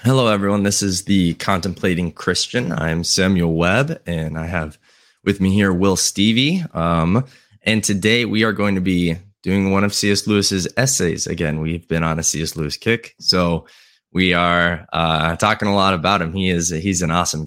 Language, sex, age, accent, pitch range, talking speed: English, male, 20-39, American, 85-110 Hz, 185 wpm